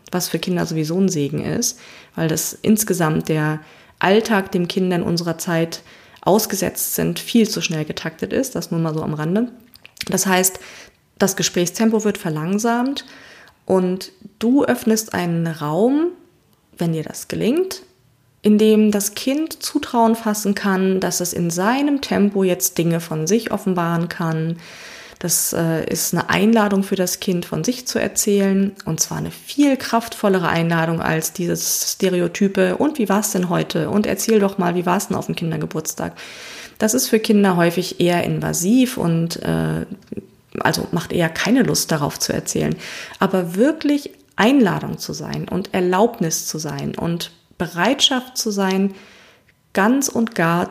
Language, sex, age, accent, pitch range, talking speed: German, female, 20-39, German, 175-225 Hz, 155 wpm